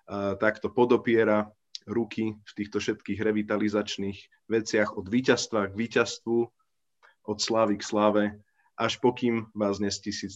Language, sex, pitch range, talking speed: Slovak, male, 105-125 Hz, 120 wpm